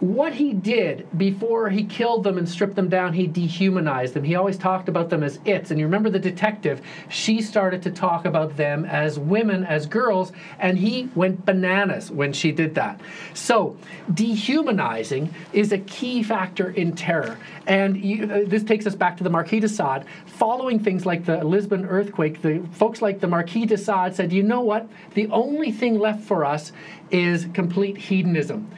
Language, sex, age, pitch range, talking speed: English, male, 40-59, 170-205 Hz, 185 wpm